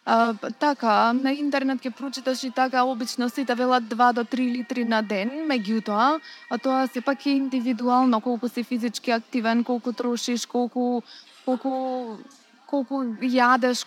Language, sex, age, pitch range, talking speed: English, female, 20-39, 225-255 Hz, 145 wpm